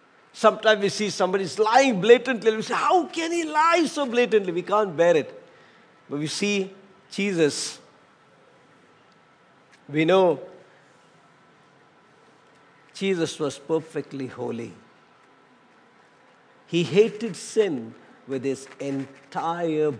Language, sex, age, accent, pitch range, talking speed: English, male, 50-69, Indian, 160-235 Hz, 105 wpm